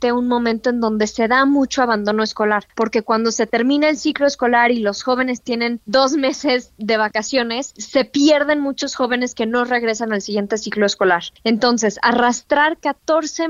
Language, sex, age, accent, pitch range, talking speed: Spanish, female, 20-39, Mexican, 230-290 Hz, 170 wpm